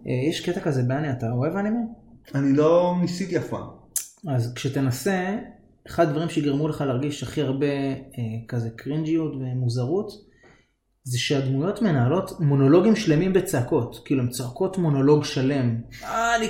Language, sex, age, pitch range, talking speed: Hebrew, male, 20-39, 125-165 Hz, 125 wpm